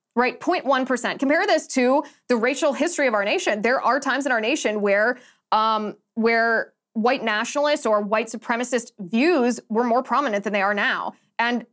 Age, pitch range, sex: 20-39, 220-285 Hz, female